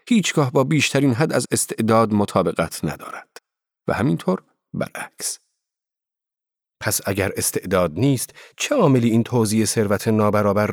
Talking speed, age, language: 120 wpm, 40-59, Persian